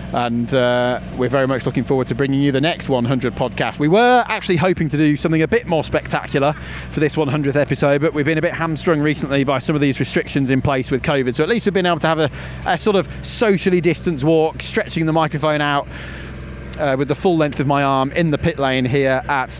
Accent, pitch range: British, 140-180 Hz